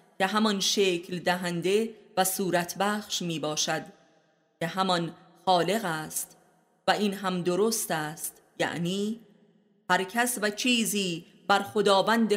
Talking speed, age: 120 wpm, 30-49